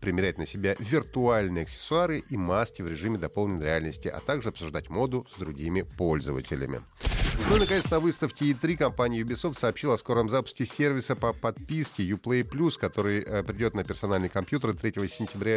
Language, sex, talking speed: Russian, male, 160 wpm